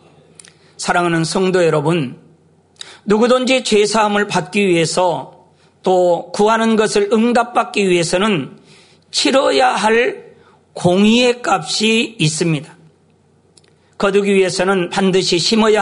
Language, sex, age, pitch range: Korean, male, 40-59, 175-220 Hz